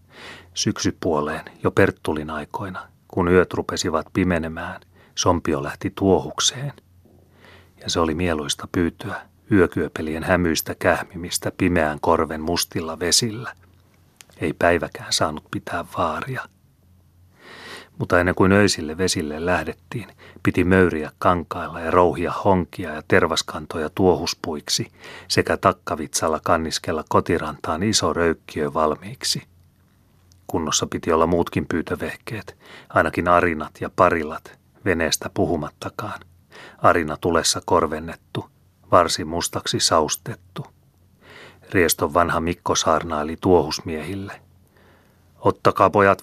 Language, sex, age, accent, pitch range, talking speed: Finnish, male, 40-59, native, 80-95 Hz, 95 wpm